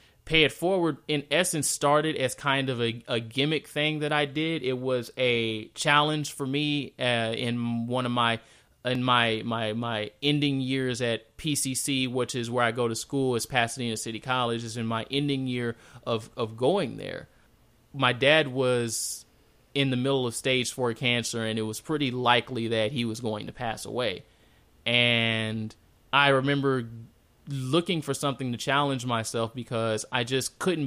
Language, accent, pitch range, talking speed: English, American, 115-140 Hz, 175 wpm